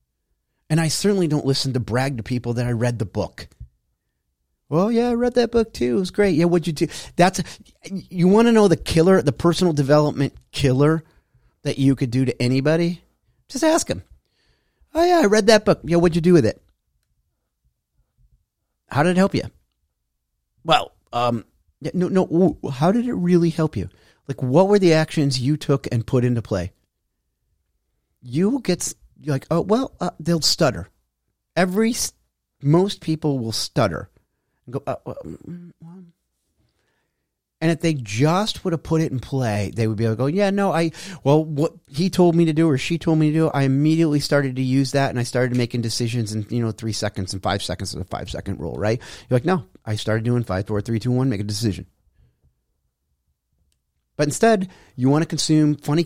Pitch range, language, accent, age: 110-170 Hz, English, American, 30-49